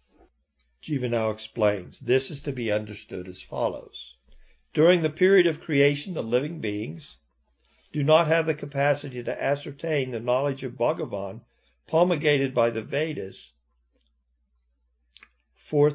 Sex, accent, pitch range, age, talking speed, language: male, American, 85-140 Hz, 50-69, 130 wpm, English